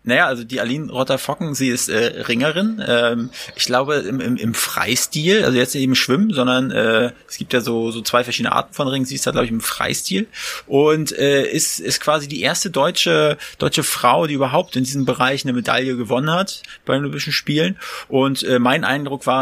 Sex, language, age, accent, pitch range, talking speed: male, German, 20-39, German, 125-140 Hz, 210 wpm